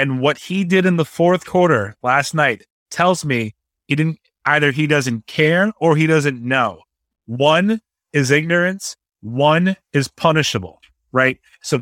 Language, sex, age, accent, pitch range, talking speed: English, male, 30-49, American, 130-165 Hz, 150 wpm